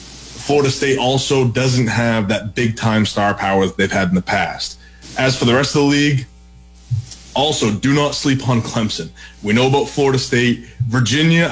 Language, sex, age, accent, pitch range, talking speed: English, male, 20-39, American, 105-130 Hz, 175 wpm